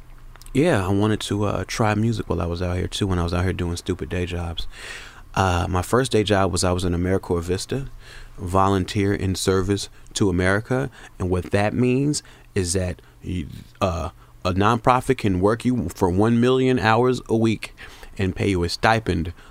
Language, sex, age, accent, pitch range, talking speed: English, male, 30-49, American, 90-110 Hz, 190 wpm